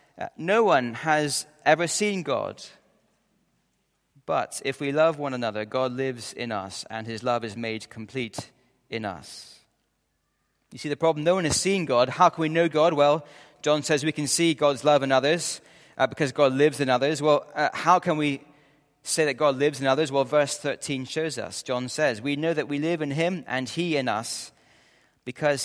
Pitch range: 125-155 Hz